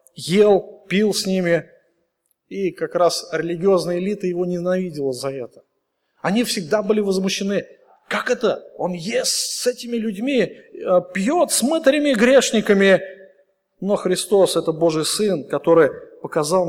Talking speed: 125 wpm